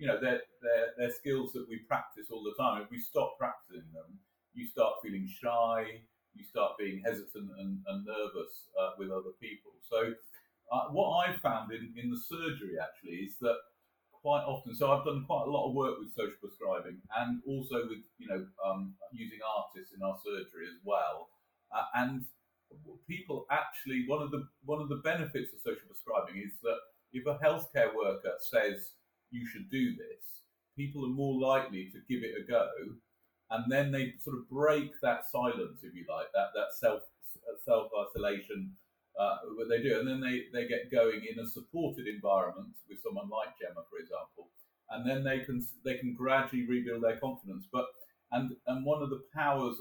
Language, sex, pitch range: English, male, 115-150 Hz